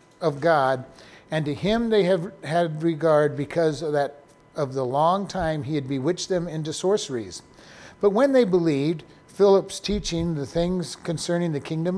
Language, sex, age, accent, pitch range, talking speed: English, male, 50-69, American, 145-180 Hz, 165 wpm